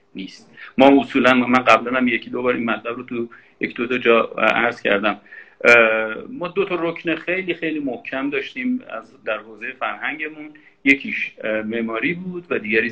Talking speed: 165 wpm